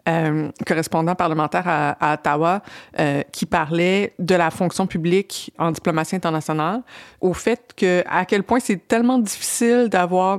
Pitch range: 165-195 Hz